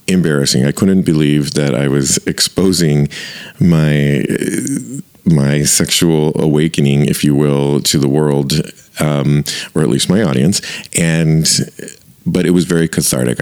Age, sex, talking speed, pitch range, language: 40-59, male, 135 wpm, 70-80 Hz, English